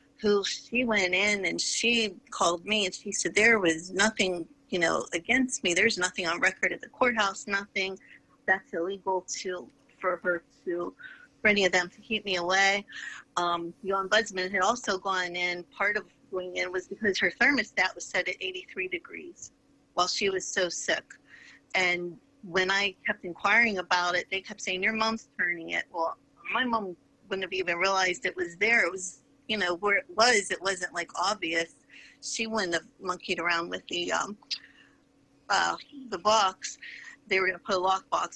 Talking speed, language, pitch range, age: 185 wpm, English, 180-220 Hz, 40-59